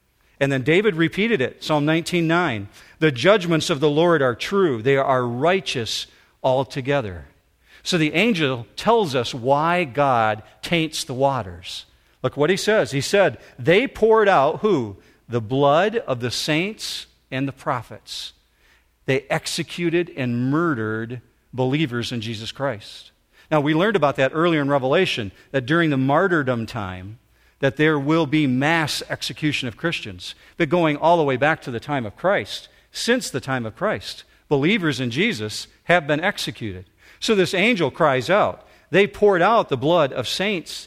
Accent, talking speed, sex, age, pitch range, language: American, 160 wpm, male, 50-69, 120-170 Hz, English